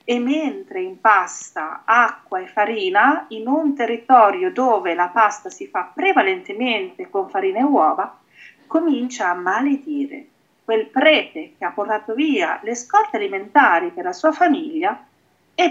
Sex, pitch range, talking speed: female, 210-335 Hz, 140 wpm